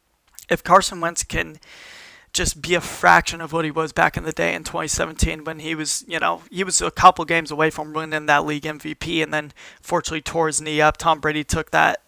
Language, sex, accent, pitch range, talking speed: English, male, American, 150-165 Hz, 225 wpm